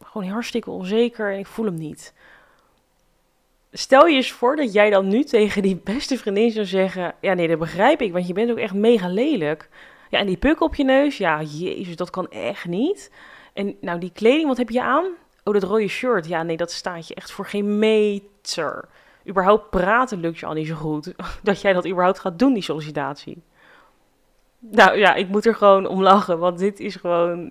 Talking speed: 210 wpm